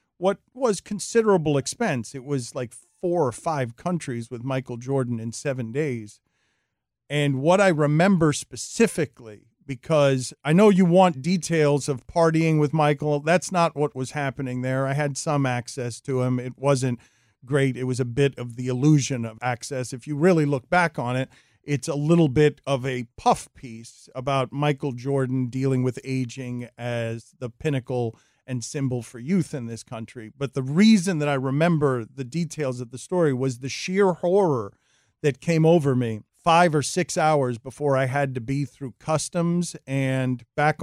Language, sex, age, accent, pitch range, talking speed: English, male, 40-59, American, 125-155 Hz, 175 wpm